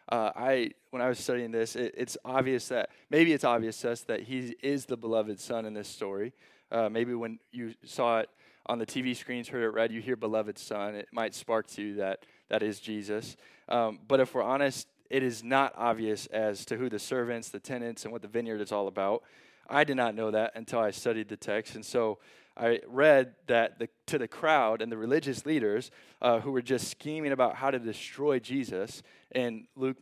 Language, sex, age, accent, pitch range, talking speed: English, male, 20-39, American, 115-140 Hz, 215 wpm